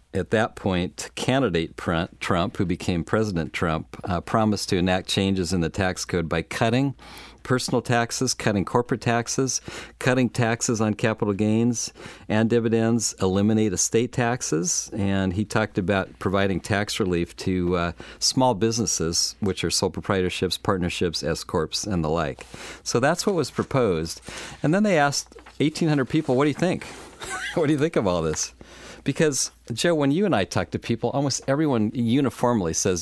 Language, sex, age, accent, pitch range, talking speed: English, male, 40-59, American, 95-125 Hz, 165 wpm